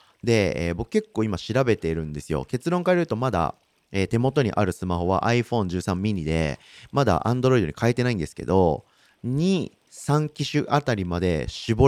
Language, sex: Japanese, male